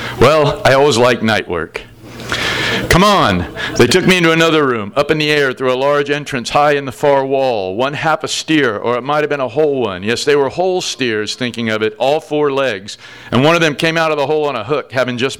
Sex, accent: male, American